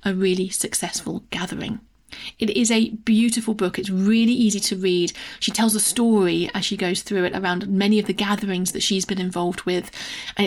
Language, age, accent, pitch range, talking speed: English, 30-49, British, 195-235 Hz, 195 wpm